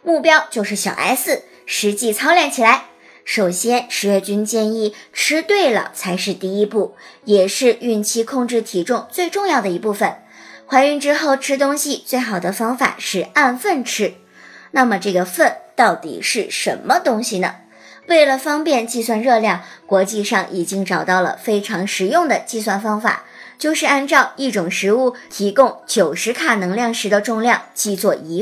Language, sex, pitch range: Chinese, male, 205-280 Hz